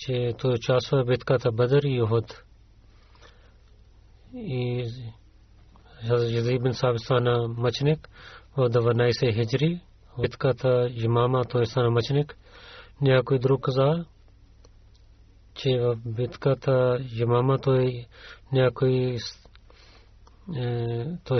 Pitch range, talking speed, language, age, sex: 115-135 Hz, 100 wpm, Bulgarian, 40-59, male